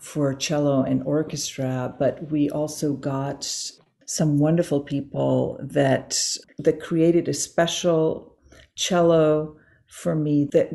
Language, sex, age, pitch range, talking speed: English, female, 50-69, 140-160 Hz, 110 wpm